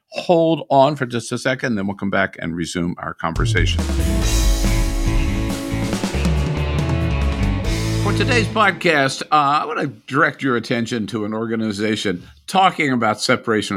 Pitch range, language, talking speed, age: 95-125 Hz, English, 130 wpm, 50-69